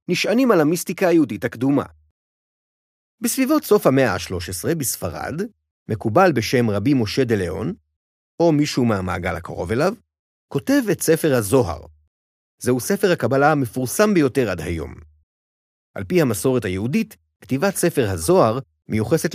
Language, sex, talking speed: Hebrew, male, 120 wpm